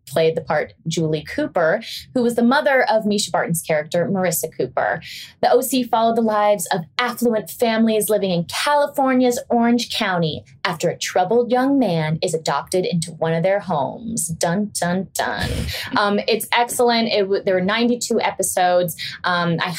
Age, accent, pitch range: 20-39, American, 175-245 Hz